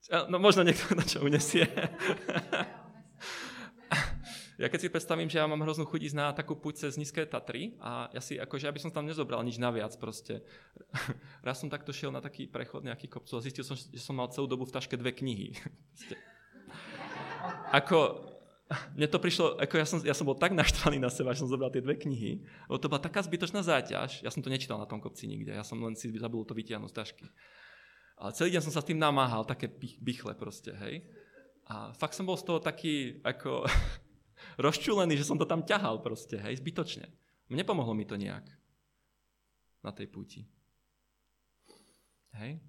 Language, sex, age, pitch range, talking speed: Czech, male, 20-39, 120-155 Hz, 185 wpm